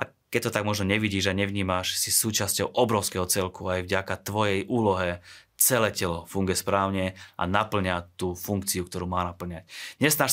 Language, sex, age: Slovak, male, 30-49